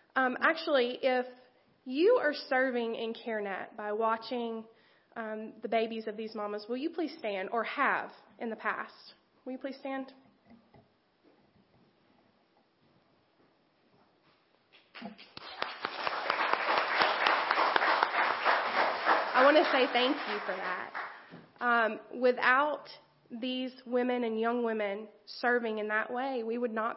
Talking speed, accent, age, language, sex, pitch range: 115 wpm, American, 30-49, English, female, 220-255 Hz